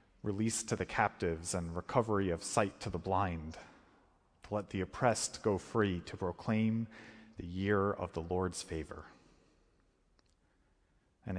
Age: 30-49